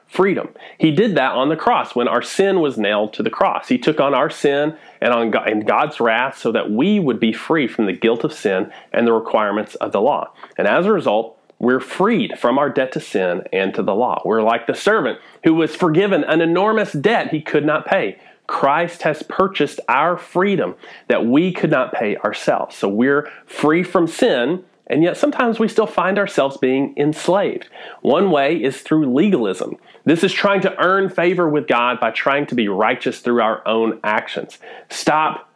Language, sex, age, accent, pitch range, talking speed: English, male, 40-59, American, 120-175 Hz, 205 wpm